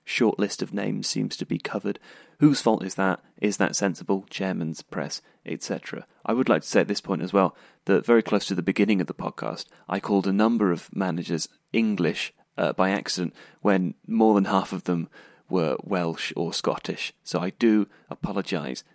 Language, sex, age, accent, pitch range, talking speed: English, male, 30-49, British, 95-110 Hz, 195 wpm